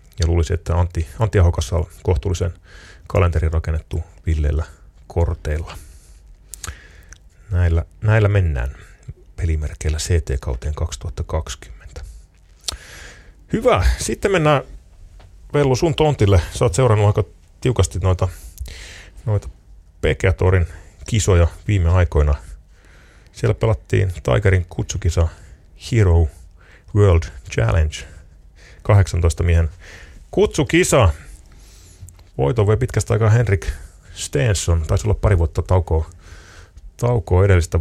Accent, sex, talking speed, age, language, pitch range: native, male, 90 wpm, 30-49, Finnish, 80-100 Hz